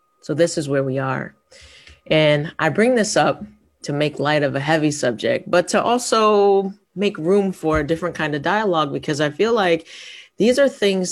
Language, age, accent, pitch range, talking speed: English, 30-49, American, 135-160 Hz, 195 wpm